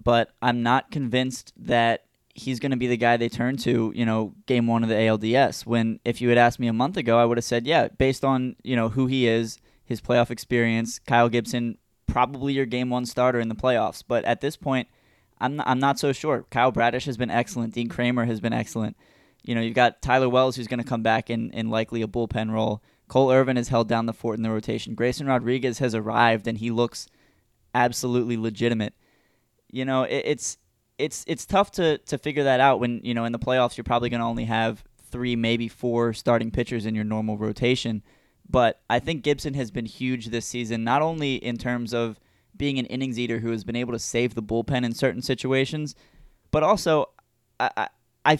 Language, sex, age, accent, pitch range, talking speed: English, male, 20-39, American, 115-130 Hz, 215 wpm